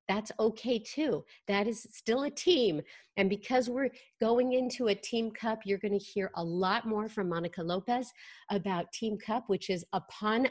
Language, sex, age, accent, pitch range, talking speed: English, female, 50-69, American, 175-225 Hz, 175 wpm